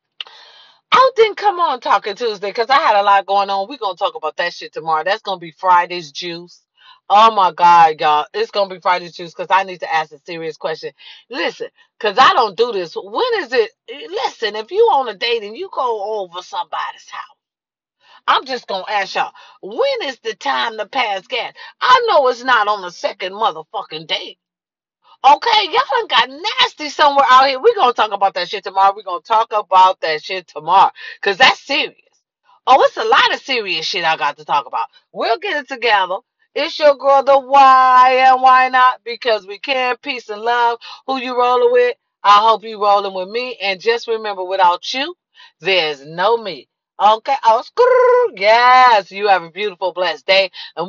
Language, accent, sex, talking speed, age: English, American, female, 205 wpm, 40-59